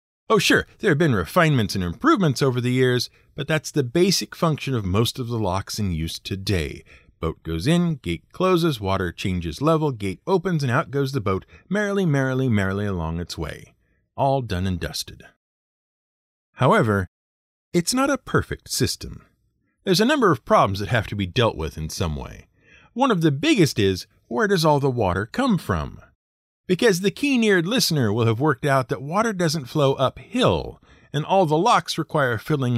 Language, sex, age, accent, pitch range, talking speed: English, male, 50-69, American, 95-160 Hz, 185 wpm